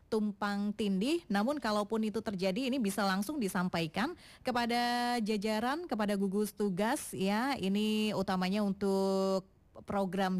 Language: Indonesian